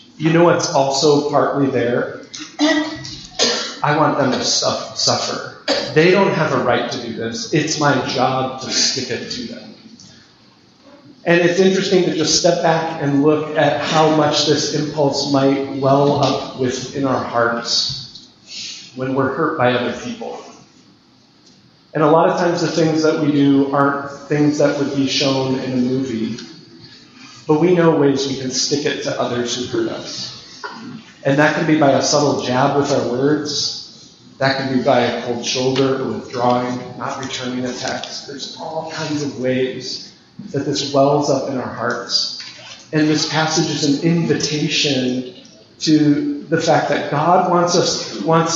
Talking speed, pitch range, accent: 165 wpm, 130-155 Hz, American